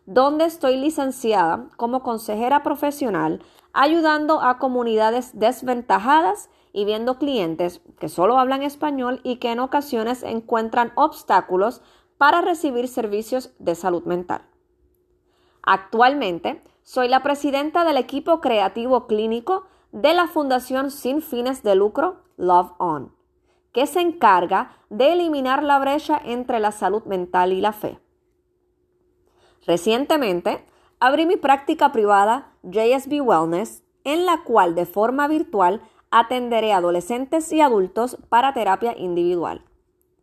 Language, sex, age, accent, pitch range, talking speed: Spanish, female, 30-49, American, 210-295 Hz, 120 wpm